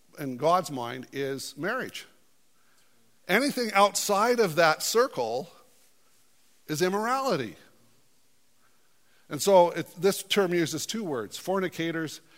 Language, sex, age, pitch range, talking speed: English, male, 50-69, 130-165 Hz, 95 wpm